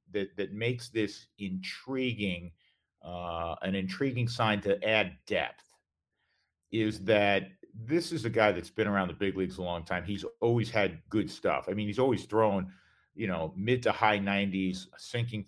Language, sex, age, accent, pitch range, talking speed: English, male, 50-69, American, 100-130 Hz, 170 wpm